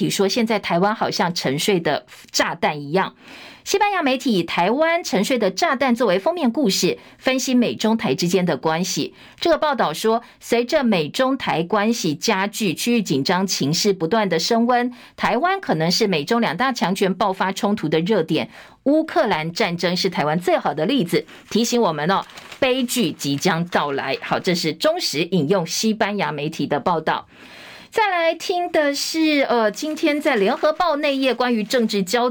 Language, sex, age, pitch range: Chinese, female, 50-69, 185-260 Hz